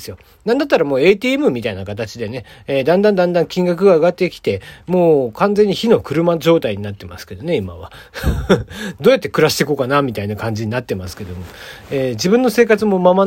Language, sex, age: Japanese, male, 40-59